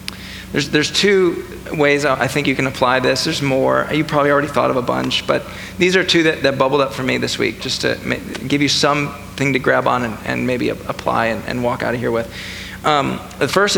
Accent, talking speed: American, 230 wpm